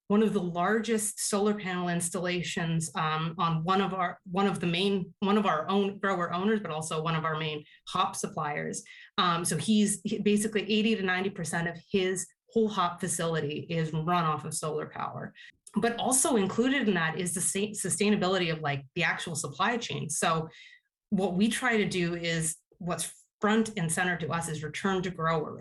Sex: female